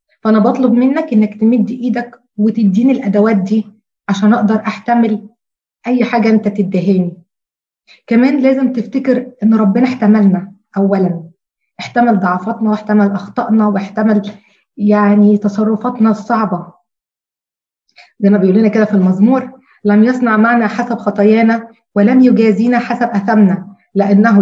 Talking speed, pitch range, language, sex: 115 wpm, 205-245 Hz, Arabic, female